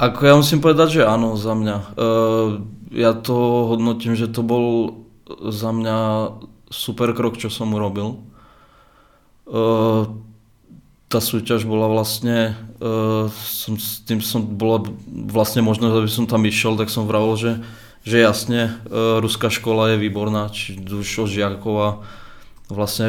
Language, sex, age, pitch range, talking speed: Czech, male, 20-39, 105-115 Hz, 145 wpm